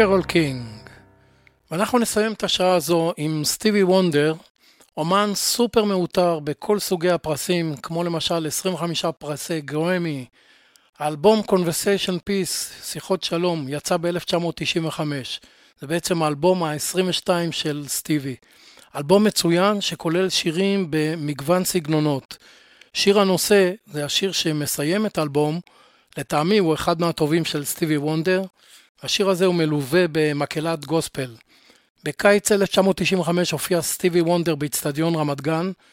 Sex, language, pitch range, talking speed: male, Hebrew, 155-185 Hz, 95 wpm